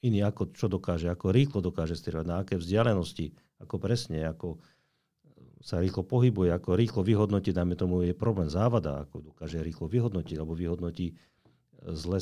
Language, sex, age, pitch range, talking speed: Slovak, male, 50-69, 85-110 Hz, 155 wpm